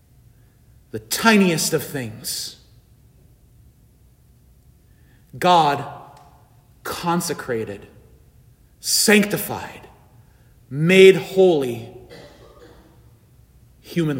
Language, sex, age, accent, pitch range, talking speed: English, male, 40-59, American, 125-185 Hz, 40 wpm